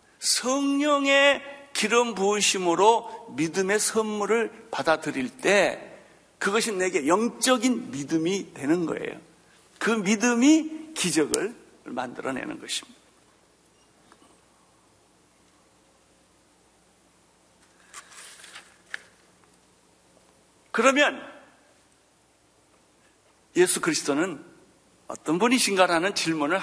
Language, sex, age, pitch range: Korean, male, 60-79, 170-275 Hz